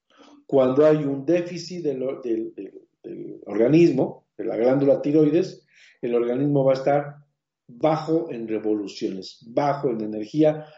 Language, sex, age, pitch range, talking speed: Spanish, male, 50-69, 125-160 Hz, 135 wpm